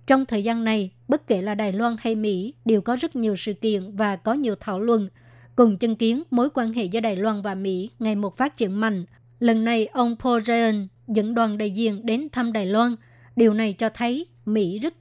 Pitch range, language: 205-235 Hz, Vietnamese